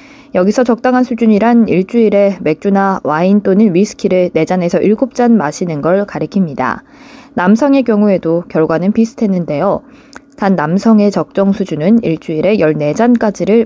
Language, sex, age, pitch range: Korean, female, 20-39, 175-245 Hz